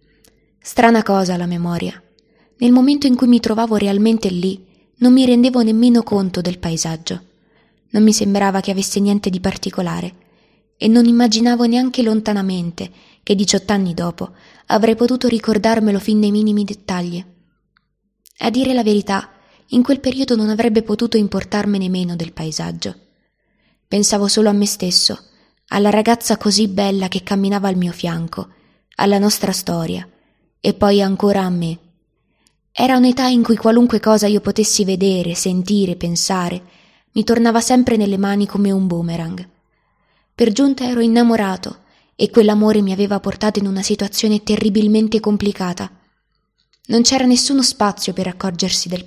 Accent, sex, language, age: native, female, Italian, 20-39